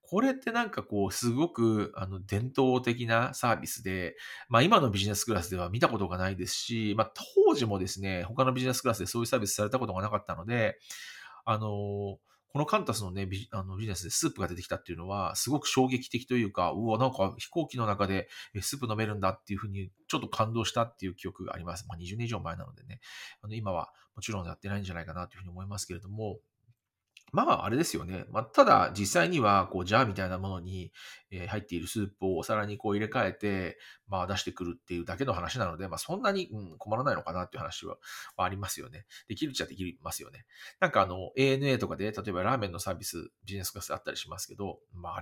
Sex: male